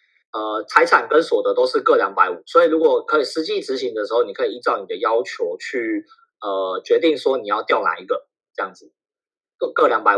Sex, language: male, Chinese